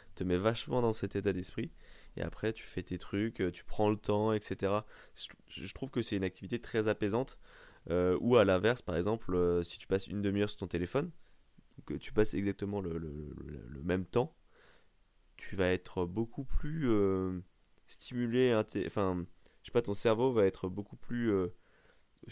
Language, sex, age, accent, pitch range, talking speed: French, male, 20-39, French, 90-110 Hz, 190 wpm